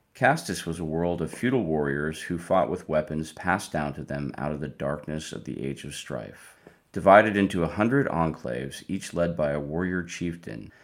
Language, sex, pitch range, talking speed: English, male, 70-85 Hz, 195 wpm